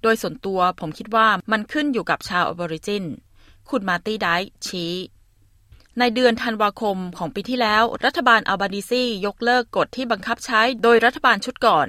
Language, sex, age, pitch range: Thai, female, 20-39, 175-235 Hz